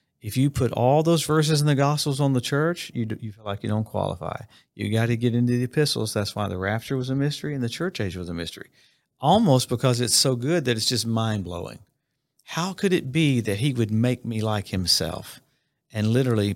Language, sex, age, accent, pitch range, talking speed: English, male, 50-69, American, 110-140 Hz, 230 wpm